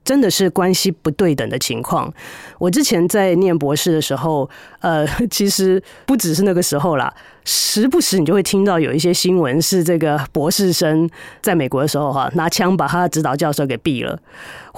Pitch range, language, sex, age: 155-200 Hz, Chinese, female, 30-49